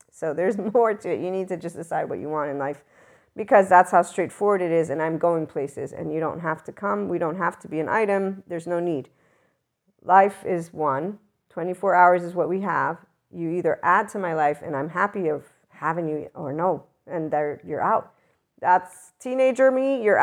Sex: female